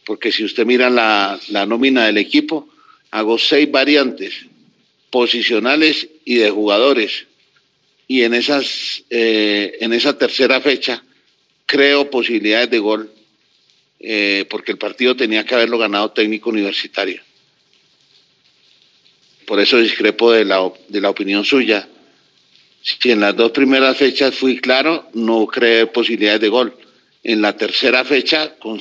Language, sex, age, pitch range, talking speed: Spanish, male, 50-69, 105-125 Hz, 125 wpm